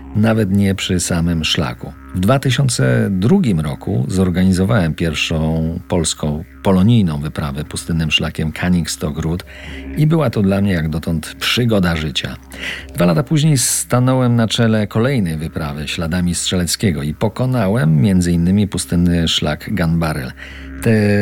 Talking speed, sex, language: 125 wpm, male, Polish